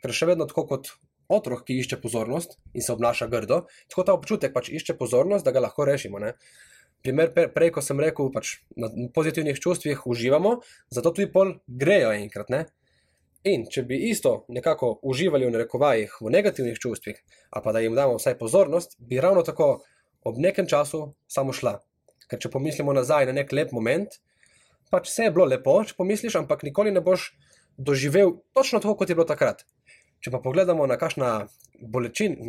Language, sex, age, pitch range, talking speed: English, male, 20-39, 120-180 Hz, 175 wpm